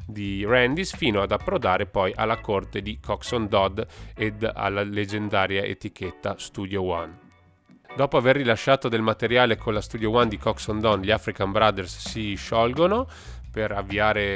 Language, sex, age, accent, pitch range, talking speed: Italian, male, 30-49, native, 95-110 Hz, 150 wpm